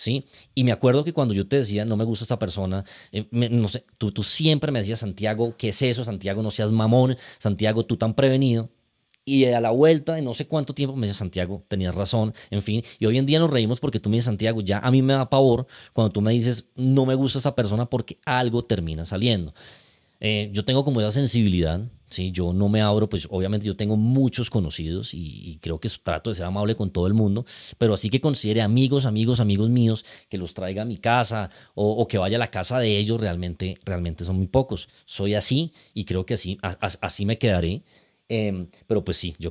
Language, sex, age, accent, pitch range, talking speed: Spanish, male, 20-39, Colombian, 100-125 Hz, 230 wpm